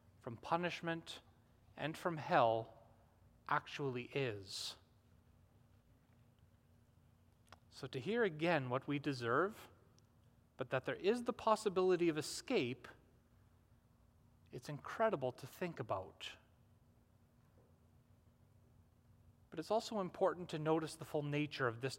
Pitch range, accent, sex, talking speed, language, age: 115-175 Hz, American, male, 105 wpm, English, 30-49